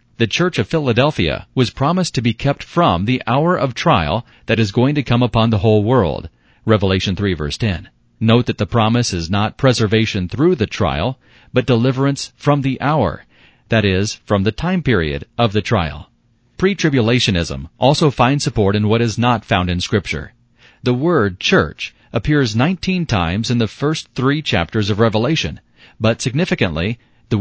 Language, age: English, 40-59